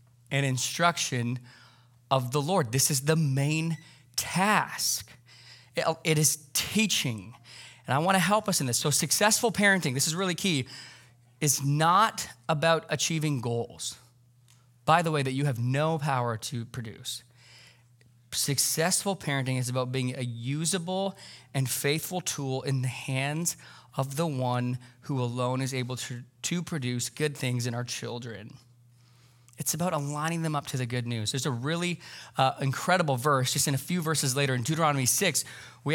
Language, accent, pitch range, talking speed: English, American, 125-165 Hz, 160 wpm